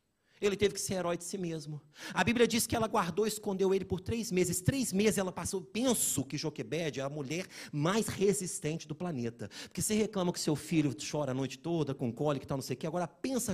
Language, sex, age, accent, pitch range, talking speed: Portuguese, male, 40-59, Brazilian, 145-225 Hz, 230 wpm